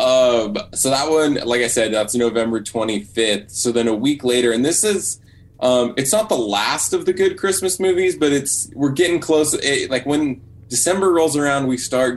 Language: English